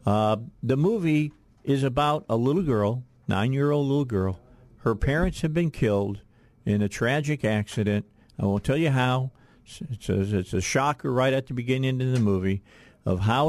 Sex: male